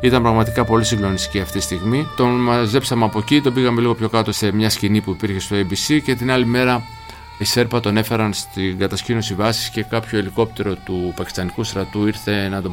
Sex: male